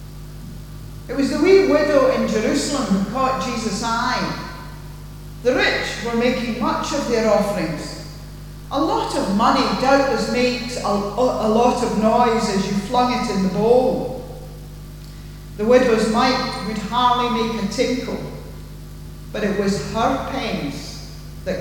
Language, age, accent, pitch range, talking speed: English, 50-69, British, 185-250 Hz, 140 wpm